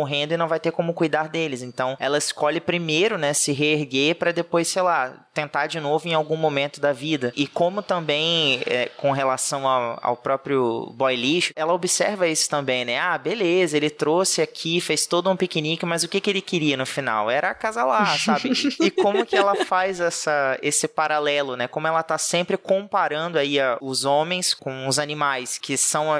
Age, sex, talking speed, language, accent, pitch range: 20-39, male, 200 wpm, Portuguese, Brazilian, 130-160 Hz